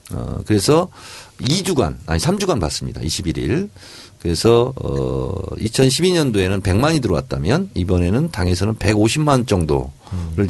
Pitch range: 90-125 Hz